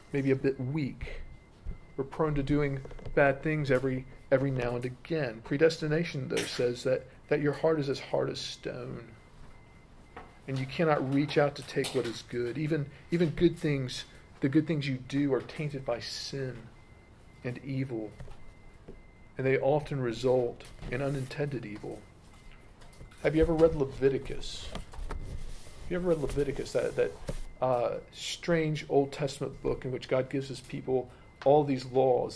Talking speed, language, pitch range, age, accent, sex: 160 wpm, English, 125-150 Hz, 40-59, American, male